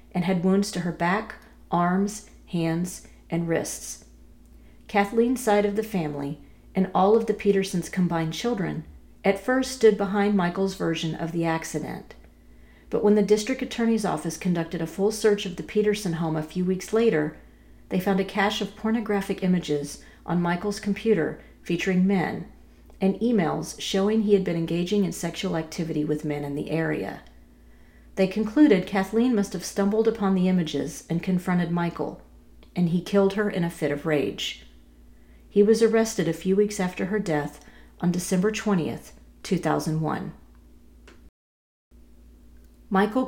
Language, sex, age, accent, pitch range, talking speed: English, female, 40-59, American, 155-200 Hz, 155 wpm